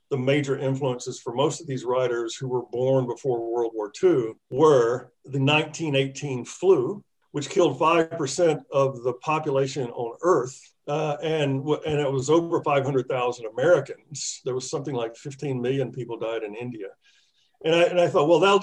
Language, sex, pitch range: English, male, 130-165 Hz